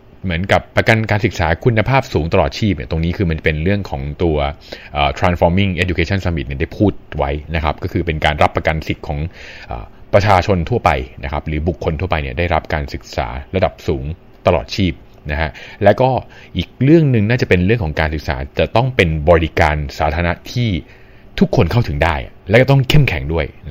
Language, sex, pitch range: Thai, male, 75-100 Hz